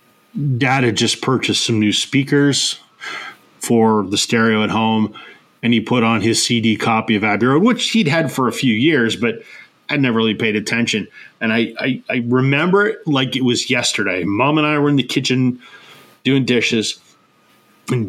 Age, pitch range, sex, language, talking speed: 30-49, 115-140 Hz, male, English, 180 wpm